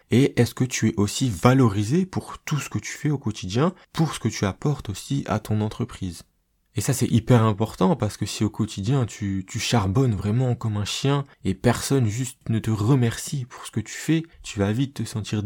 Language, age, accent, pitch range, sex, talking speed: French, 20-39, French, 100-125 Hz, male, 220 wpm